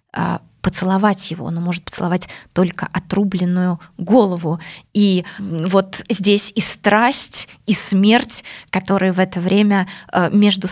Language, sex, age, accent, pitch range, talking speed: Russian, female, 20-39, native, 180-210 Hz, 110 wpm